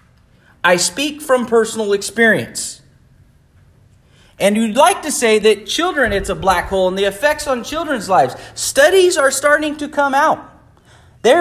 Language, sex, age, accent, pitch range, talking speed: English, male, 40-59, American, 205-300 Hz, 155 wpm